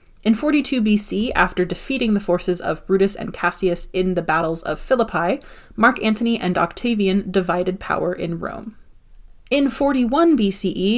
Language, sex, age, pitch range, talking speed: English, female, 20-39, 180-235 Hz, 150 wpm